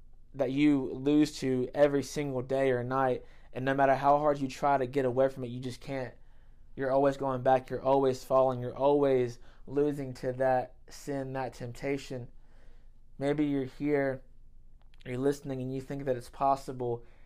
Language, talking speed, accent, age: English, 175 wpm, American, 20-39